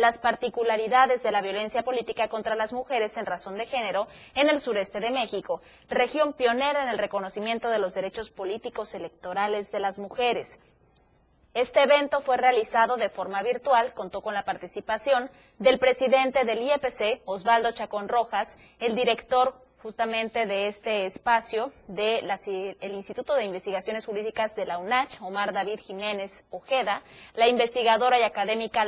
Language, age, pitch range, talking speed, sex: Spanish, 20-39, 205-250 Hz, 150 wpm, female